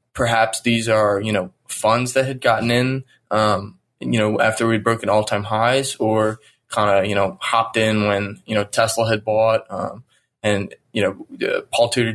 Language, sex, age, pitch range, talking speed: English, male, 20-39, 105-120 Hz, 195 wpm